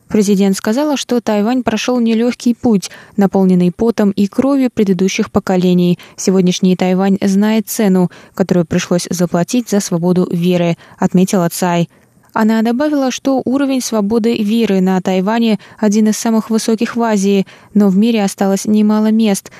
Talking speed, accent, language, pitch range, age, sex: 140 wpm, native, Russian, 180-220 Hz, 20-39, female